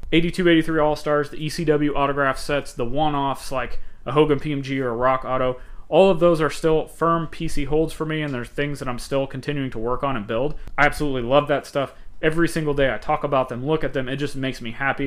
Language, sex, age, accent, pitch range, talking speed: English, male, 30-49, American, 130-165 Hz, 235 wpm